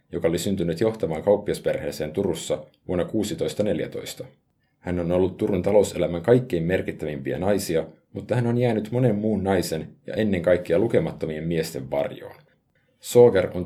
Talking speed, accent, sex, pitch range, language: 135 wpm, native, male, 80-110 Hz, Finnish